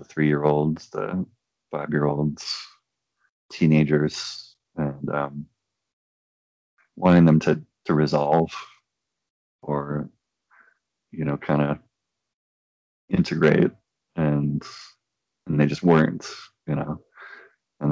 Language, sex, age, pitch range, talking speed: English, male, 30-49, 75-80 Hz, 85 wpm